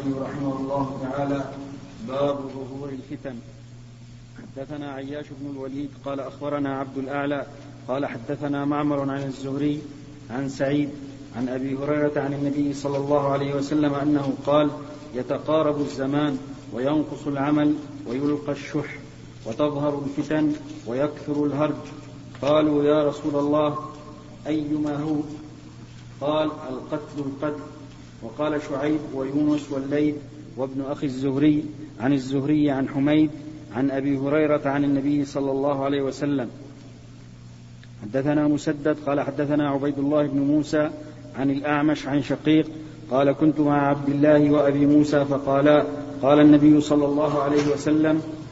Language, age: Arabic, 40-59